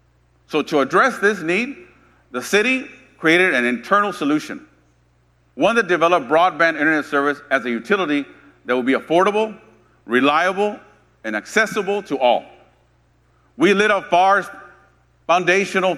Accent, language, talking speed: American, English, 130 wpm